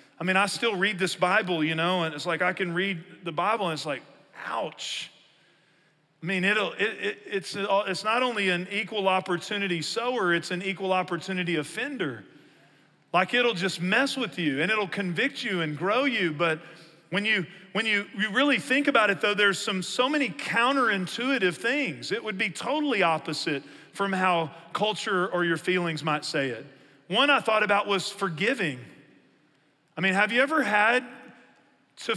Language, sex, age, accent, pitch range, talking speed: English, male, 40-59, American, 170-210 Hz, 180 wpm